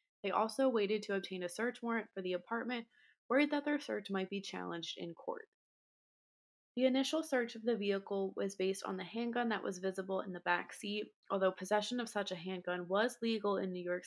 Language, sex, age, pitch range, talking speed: English, female, 20-39, 190-230 Hz, 210 wpm